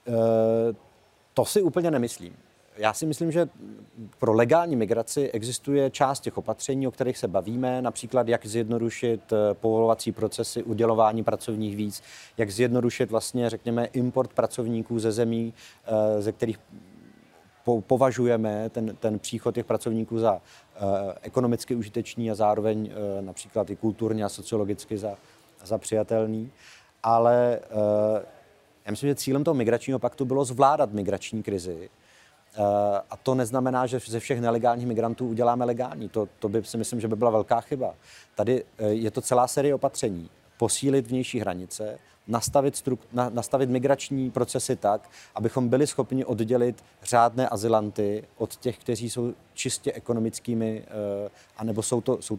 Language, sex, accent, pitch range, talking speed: Czech, male, native, 110-125 Hz, 135 wpm